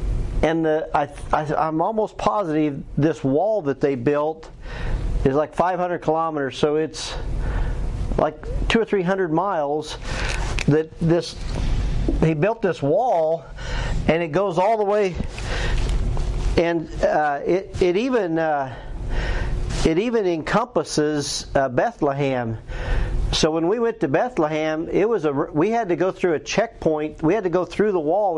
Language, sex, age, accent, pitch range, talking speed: English, male, 50-69, American, 140-195 Hz, 150 wpm